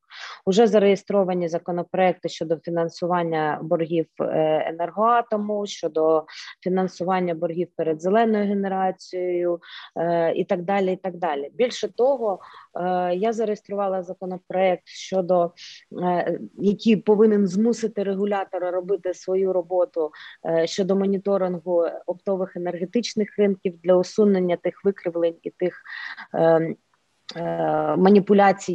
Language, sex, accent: Ukrainian, female, native